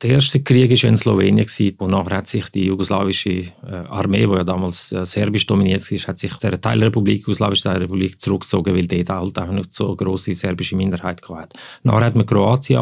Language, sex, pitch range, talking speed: German, male, 95-120 Hz, 185 wpm